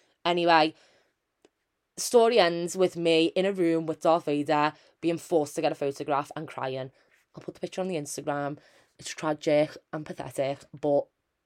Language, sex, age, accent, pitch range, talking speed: English, female, 20-39, British, 145-175 Hz, 160 wpm